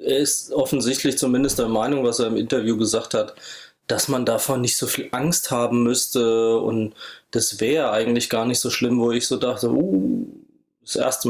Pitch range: 120-140 Hz